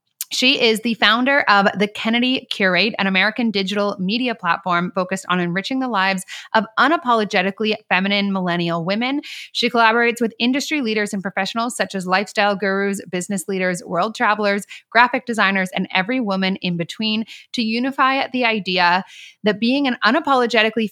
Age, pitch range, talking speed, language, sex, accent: 20-39, 190-235 Hz, 150 wpm, English, female, American